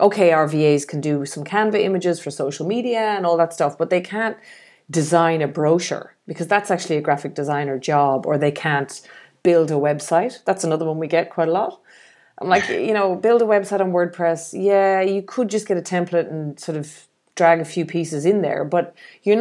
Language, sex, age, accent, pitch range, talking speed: English, female, 30-49, Irish, 155-195 Hz, 215 wpm